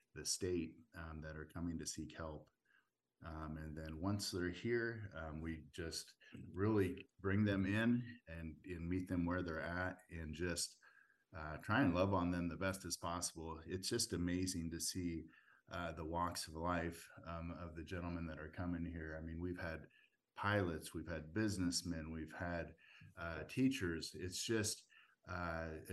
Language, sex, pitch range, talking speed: English, male, 80-95 Hz, 170 wpm